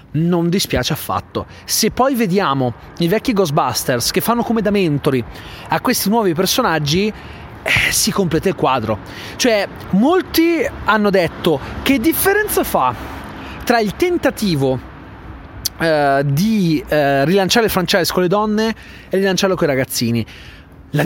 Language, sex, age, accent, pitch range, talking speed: Italian, male, 30-49, native, 150-210 Hz, 135 wpm